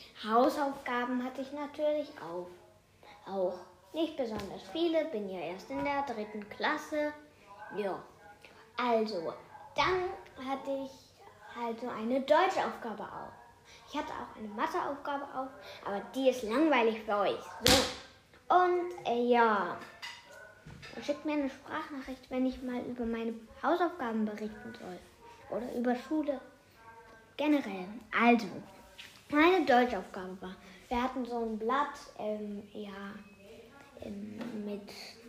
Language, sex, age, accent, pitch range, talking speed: Italian, female, 10-29, German, 215-280 Hz, 125 wpm